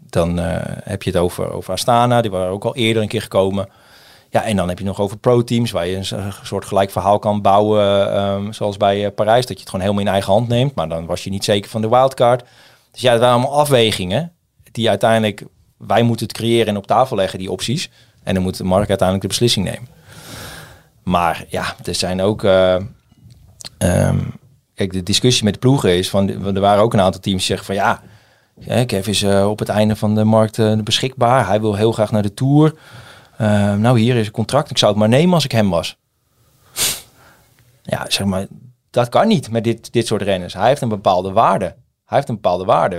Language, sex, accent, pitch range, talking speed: Dutch, male, Dutch, 100-120 Hz, 220 wpm